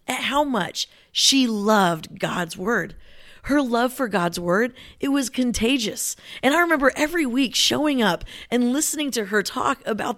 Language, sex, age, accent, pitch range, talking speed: English, female, 30-49, American, 200-255 Hz, 165 wpm